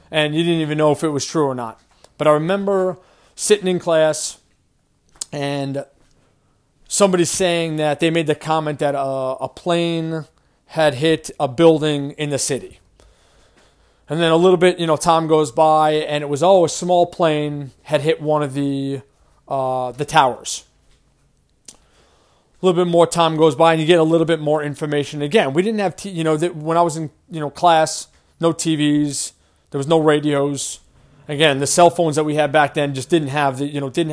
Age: 30-49